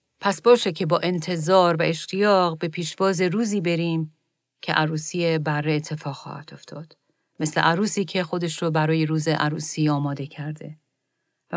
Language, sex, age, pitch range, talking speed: Persian, female, 40-59, 155-185 Hz, 140 wpm